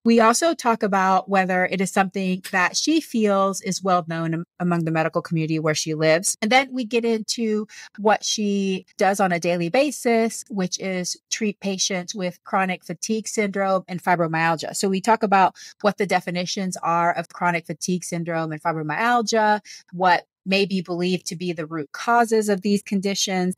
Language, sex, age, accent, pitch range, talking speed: English, female, 30-49, American, 170-215 Hz, 175 wpm